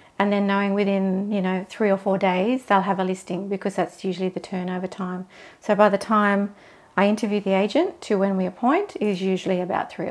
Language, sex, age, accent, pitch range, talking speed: English, female, 40-59, Australian, 190-225 Hz, 215 wpm